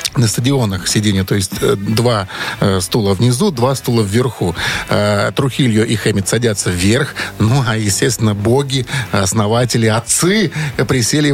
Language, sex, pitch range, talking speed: Russian, male, 110-165 Hz, 130 wpm